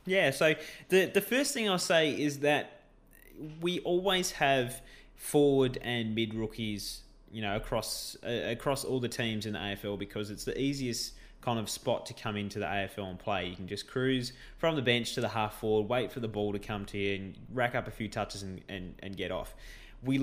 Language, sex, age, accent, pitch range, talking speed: English, male, 20-39, Australian, 105-130 Hz, 210 wpm